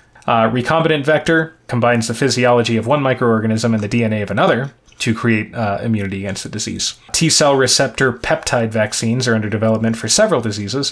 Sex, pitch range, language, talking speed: male, 110-125 Hz, English, 175 wpm